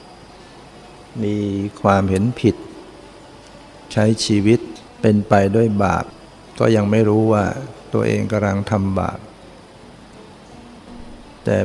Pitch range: 95-115 Hz